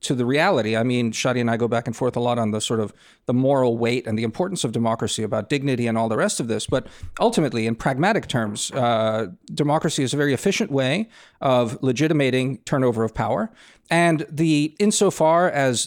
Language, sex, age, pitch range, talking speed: English, male, 40-59, 120-165 Hz, 210 wpm